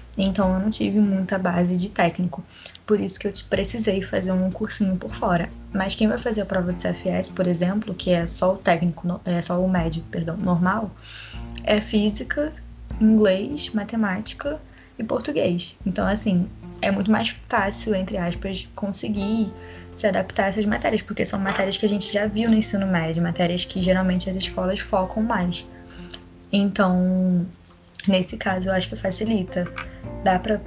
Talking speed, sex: 170 wpm, female